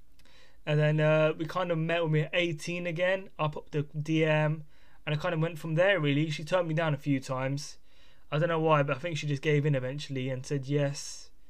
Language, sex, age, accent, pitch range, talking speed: English, male, 10-29, British, 150-175 Hz, 240 wpm